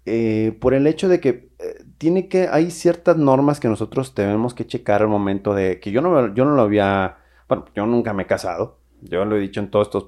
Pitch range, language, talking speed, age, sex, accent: 100-135 Hz, Spanish, 240 wpm, 30-49, male, Mexican